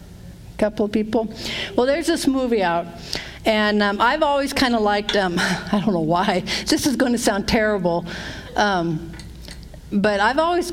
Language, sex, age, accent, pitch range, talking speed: English, female, 50-69, American, 195-275 Hz, 175 wpm